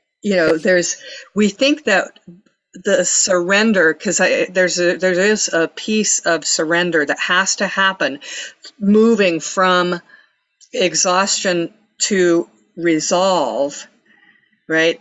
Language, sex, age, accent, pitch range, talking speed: English, female, 50-69, American, 160-190 Hz, 110 wpm